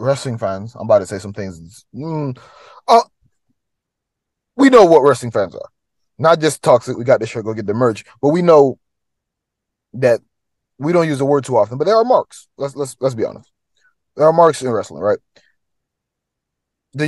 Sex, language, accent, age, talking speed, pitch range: male, English, American, 20-39, 190 wpm, 120-165 Hz